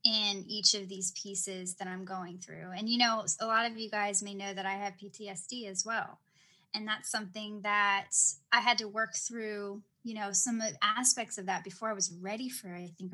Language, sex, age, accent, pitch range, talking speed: English, female, 10-29, American, 195-230 Hz, 215 wpm